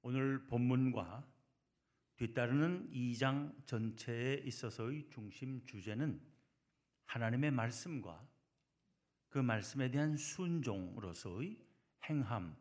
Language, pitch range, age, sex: Korean, 120-150 Hz, 60-79, male